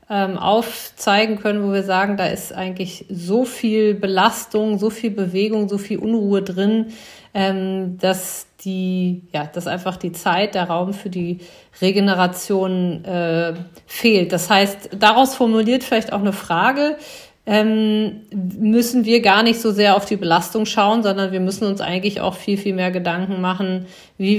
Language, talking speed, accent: German, 150 wpm, German